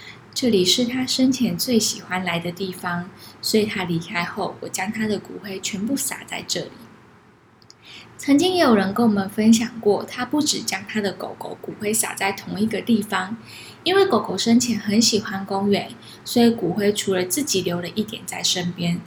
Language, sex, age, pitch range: Chinese, female, 10-29, 190-240 Hz